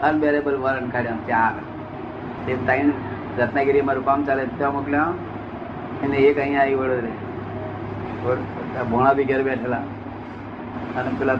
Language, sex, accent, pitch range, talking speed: Gujarati, male, native, 120-135 Hz, 60 wpm